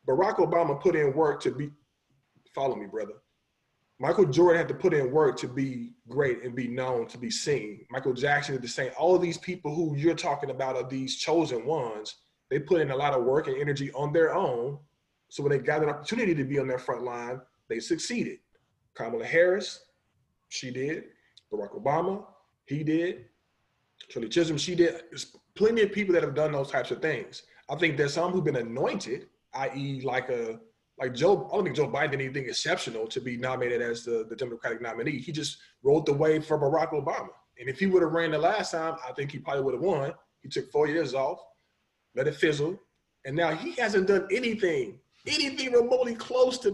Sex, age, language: male, 20-39, English